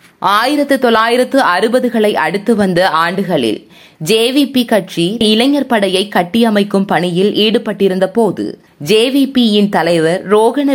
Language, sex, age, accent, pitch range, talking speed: Tamil, female, 20-39, native, 195-255 Hz, 95 wpm